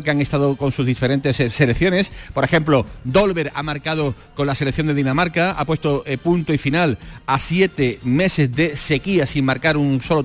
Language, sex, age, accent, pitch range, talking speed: Spanish, male, 40-59, Spanish, 130-165 Hz, 180 wpm